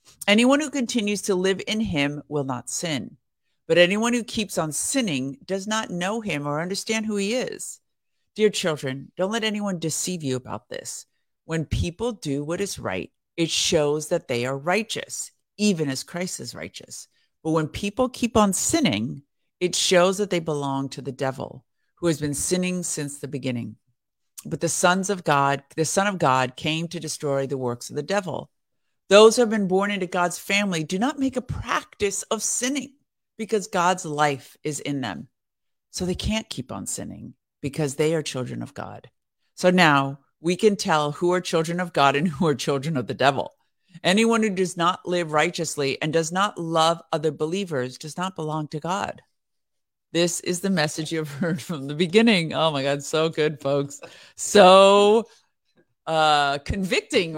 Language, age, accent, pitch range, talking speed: English, 50-69, American, 145-200 Hz, 180 wpm